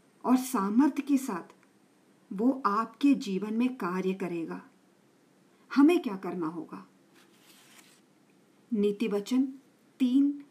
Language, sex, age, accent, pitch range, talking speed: Hindi, female, 50-69, native, 210-285 Hz, 95 wpm